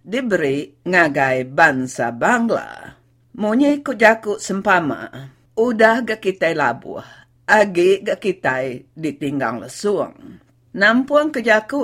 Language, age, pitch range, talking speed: English, 50-69, 150-225 Hz, 90 wpm